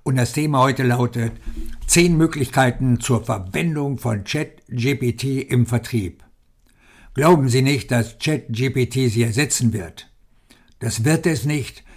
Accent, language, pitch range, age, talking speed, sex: German, German, 115-135 Hz, 60-79, 125 wpm, male